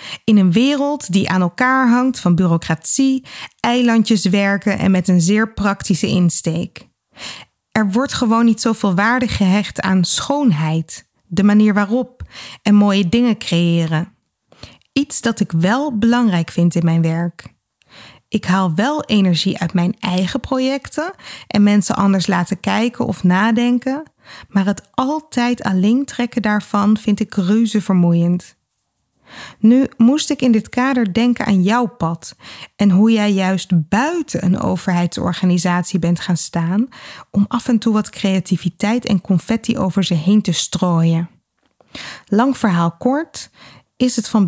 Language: Dutch